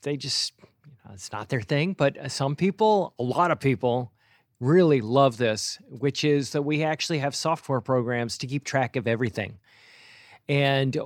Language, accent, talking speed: English, American, 165 wpm